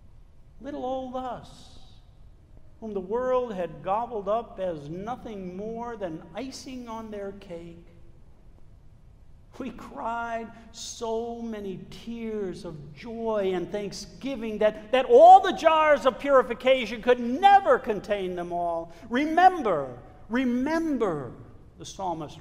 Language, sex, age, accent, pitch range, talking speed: English, male, 60-79, American, 190-265 Hz, 110 wpm